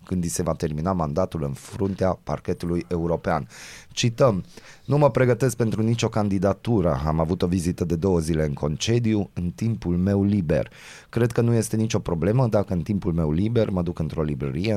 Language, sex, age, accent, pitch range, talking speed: Romanian, male, 20-39, native, 85-110 Hz, 180 wpm